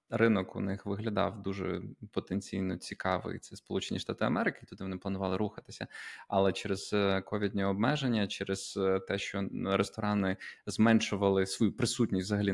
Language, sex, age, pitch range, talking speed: Ukrainian, male, 20-39, 100-120 Hz, 130 wpm